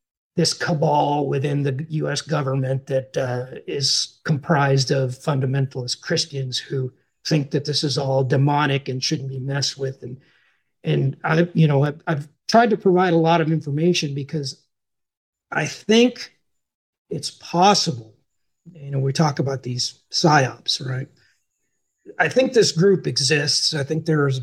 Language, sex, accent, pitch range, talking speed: English, male, American, 135-165 Hz, 150 wpm